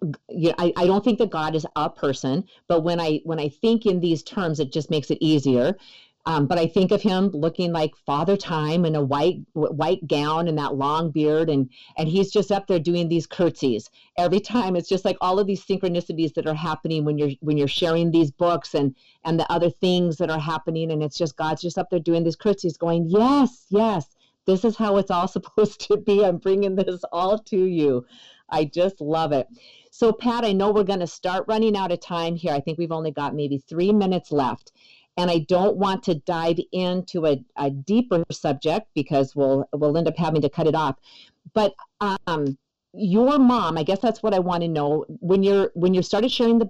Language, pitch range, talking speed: English, 155-195 Hz, 220 wpm